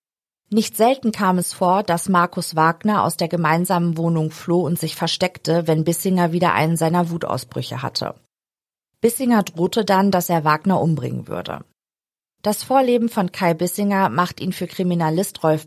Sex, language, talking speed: female, German, 155 wpm